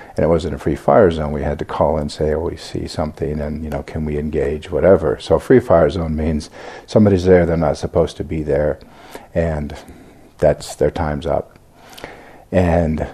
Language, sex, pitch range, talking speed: English, male, 80-95 Hz, 195 wpm